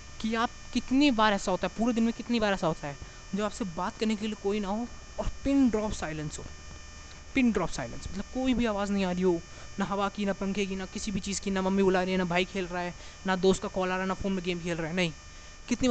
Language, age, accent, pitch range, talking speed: Hindi, 20-39, native, 175-215 Hz, 290 wpm